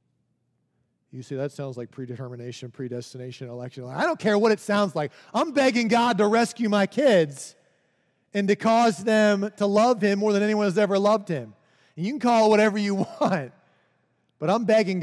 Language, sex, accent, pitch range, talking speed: English, male, American, 150-220 Hz, 190 wpm